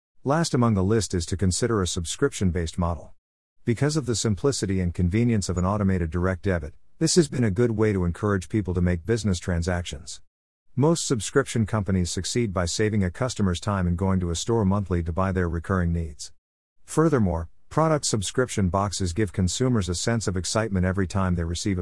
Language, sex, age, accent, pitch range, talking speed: English, male, 50-69, American, 90-115 Hz, 185 wpm